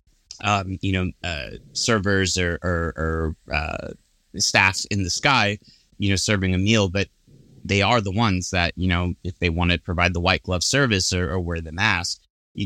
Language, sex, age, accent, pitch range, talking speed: English, male, 30-49, American, 85-100 Hz, 195 wpm